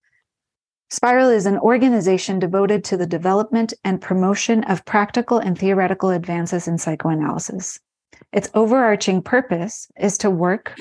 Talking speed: 130 wpm